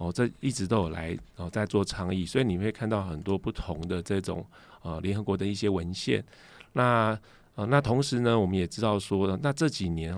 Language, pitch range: Chinese, 90-115 Hz